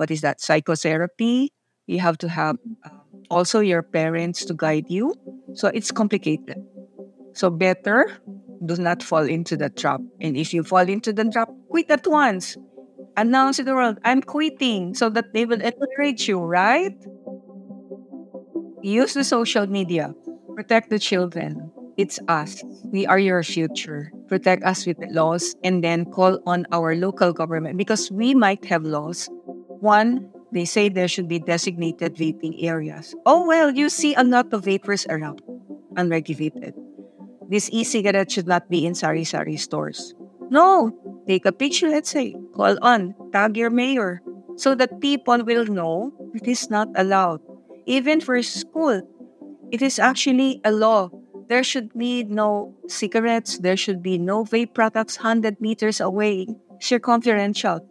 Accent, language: native, Filipino